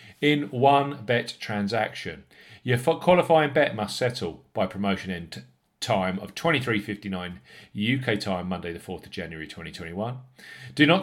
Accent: British